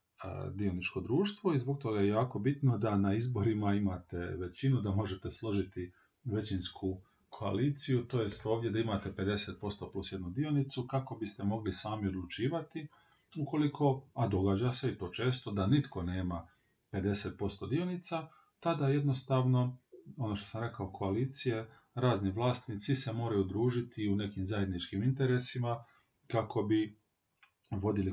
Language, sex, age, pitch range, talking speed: Croatian, male, 40-59, 100-130 Hz, 135 wpm